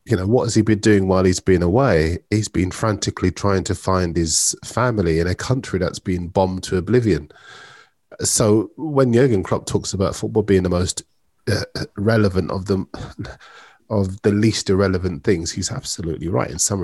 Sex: male